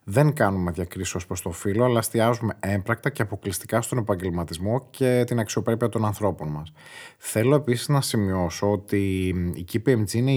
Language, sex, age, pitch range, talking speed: Greek, male, 30-49, 95-120 Hz, 160 wpm